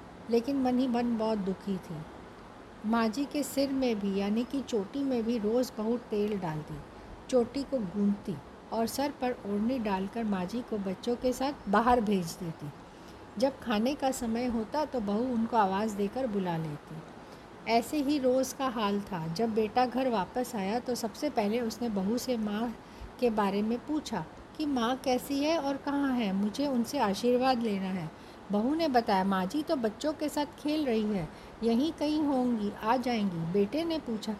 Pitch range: 215-285 Hz